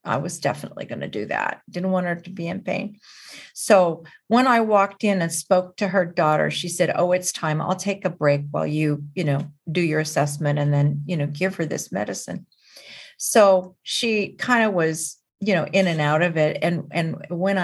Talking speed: 215 wpm